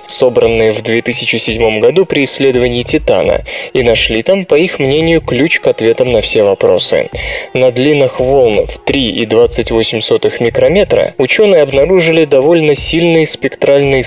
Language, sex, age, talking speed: Russian, male, 20-39, 130 wpm